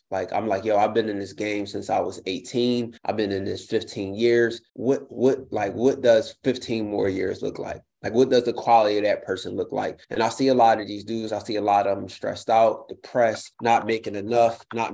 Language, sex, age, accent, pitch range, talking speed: English, male, 20-39, American, 105-120 Hz, 240 wpm